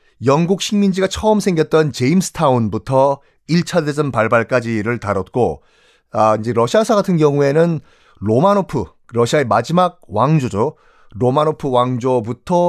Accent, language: native, Korean